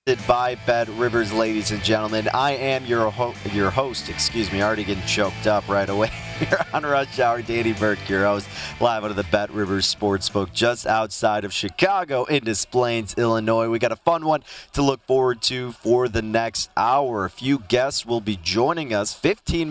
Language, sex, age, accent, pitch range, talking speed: English, male, 30-49, American, 105-135 Hz, 200 wpm